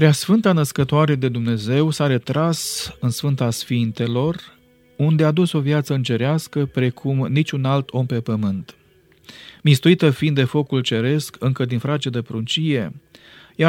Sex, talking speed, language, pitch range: male, 140 wpm, Romanian, 125-150 Hz